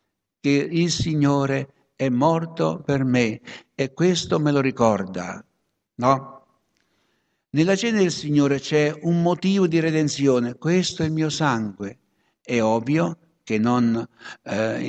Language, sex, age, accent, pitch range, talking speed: Italian, male, 60-79, native, 135-170 Hz, 130 wpm